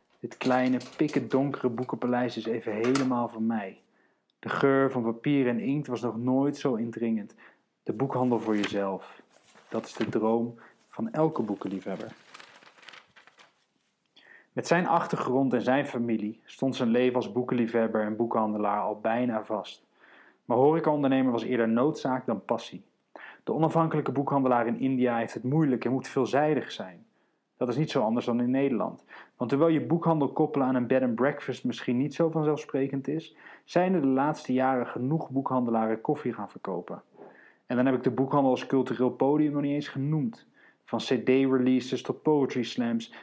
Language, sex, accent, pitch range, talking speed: Dutch, male, Dutch, 120-140 Hz, 165 wpm